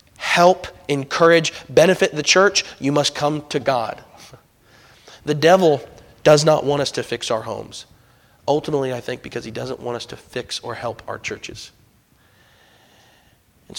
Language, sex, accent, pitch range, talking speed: English, male, American, 125-150 Hz, 150 wpm